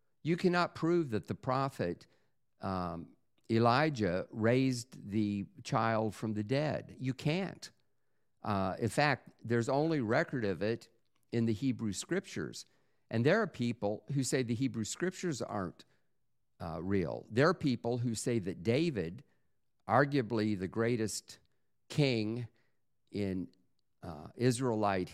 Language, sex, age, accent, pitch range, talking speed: English, male, 50-69, American, 105-140 Hz, 130 wpm